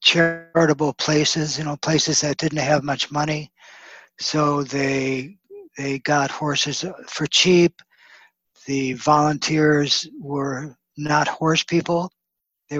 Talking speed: 115 wpm